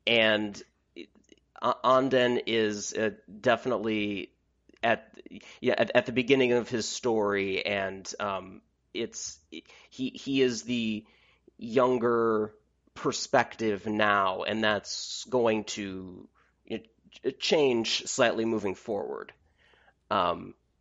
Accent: American